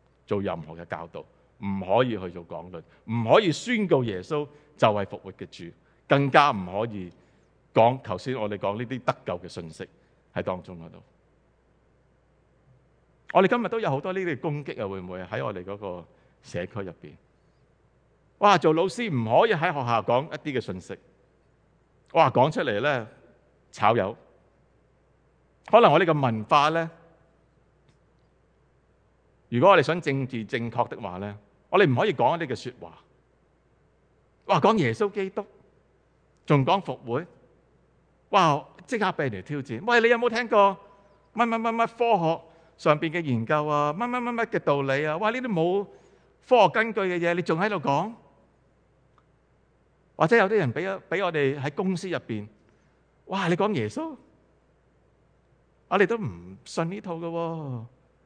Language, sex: English, male